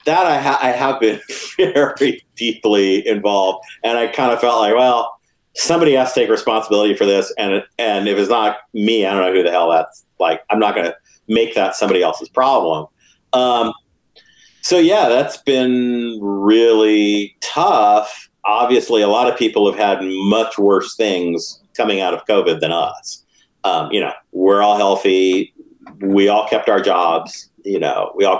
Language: English